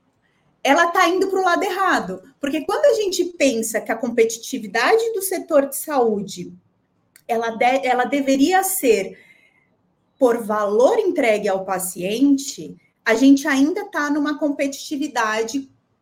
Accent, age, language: Brazilian, 30-49, Portuguese